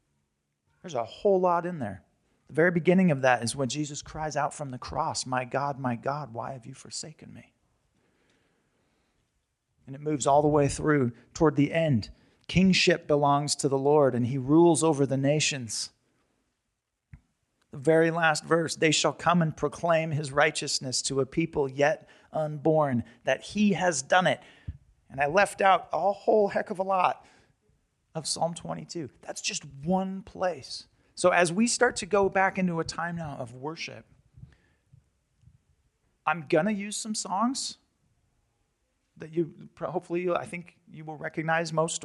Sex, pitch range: male, 135-175 Hz